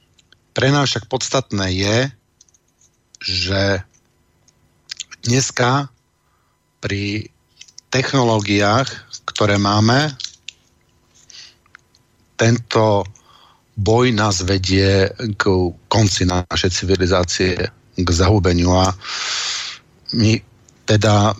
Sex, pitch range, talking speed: male, 100-125 Hz, 65 wpm